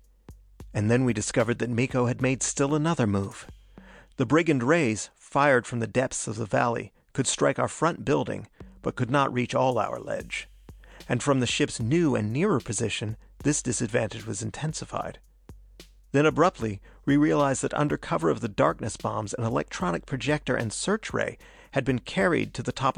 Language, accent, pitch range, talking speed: English, American, 110-135 Hz, 180 wpm